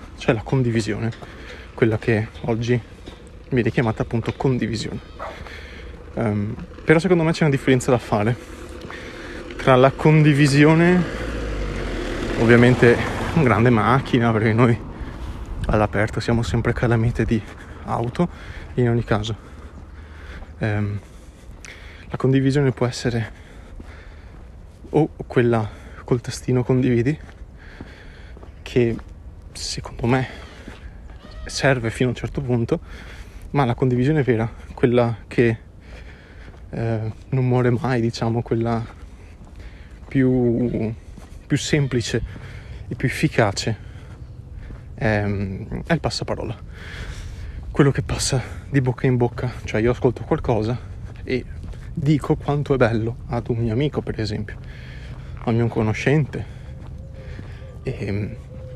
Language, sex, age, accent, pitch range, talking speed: Italian, male, 20-39, native, 90-125 Hz, 105 wpm